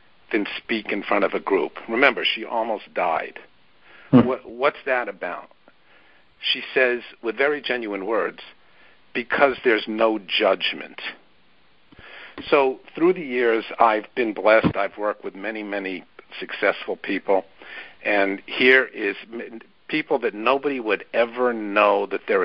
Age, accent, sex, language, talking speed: 50-69, American, male, English, 130 wpm